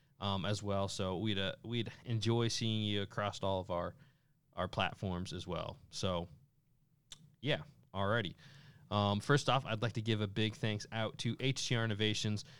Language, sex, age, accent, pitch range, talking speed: English, male, 20-39, American, 105-135 Hz, 165 wpm